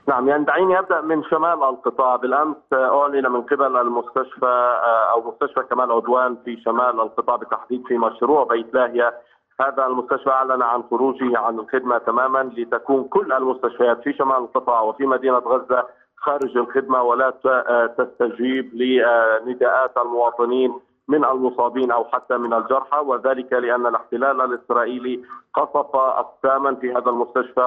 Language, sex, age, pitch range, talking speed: Arabic, male, 40-59, 125-135 Hz, 135 wpm